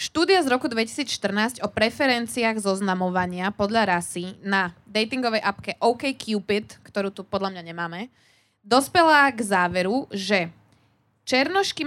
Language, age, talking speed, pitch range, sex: Slovak, 20-39, 120 wpm, 195-230 Hz, female